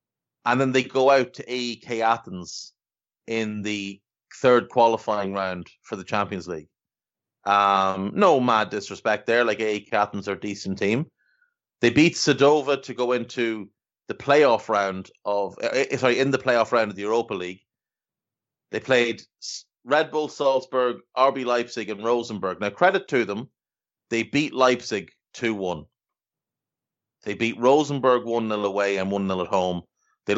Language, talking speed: English, 155 wpm